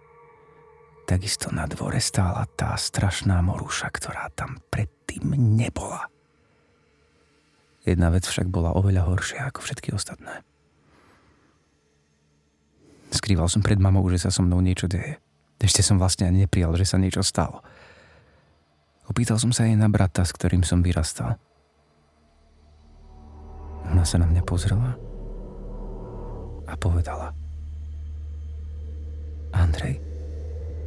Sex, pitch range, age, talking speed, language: male, 75-110 Hz, 30-49, 110 wpm, Slovak